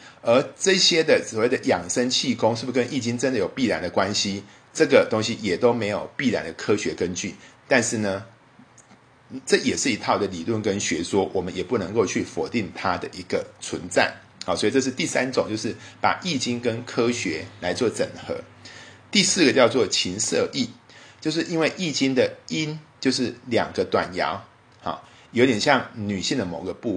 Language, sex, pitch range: Chinese, male, 110-140 Hz